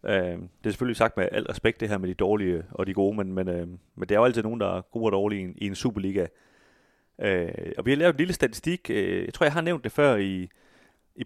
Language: Danish